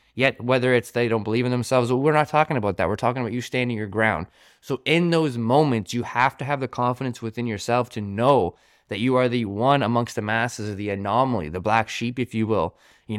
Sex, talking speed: male, 235 wpm